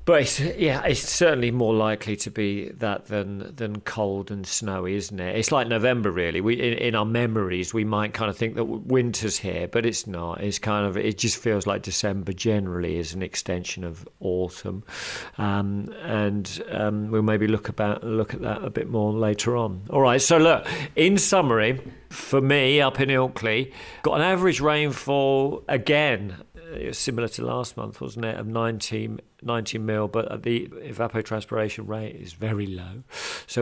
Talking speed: 180 wpm